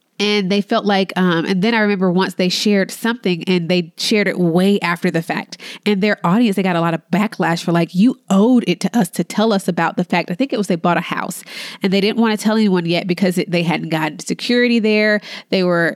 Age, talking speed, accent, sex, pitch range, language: 20-39, 250 wpm, American, female, 175-215 Hz, English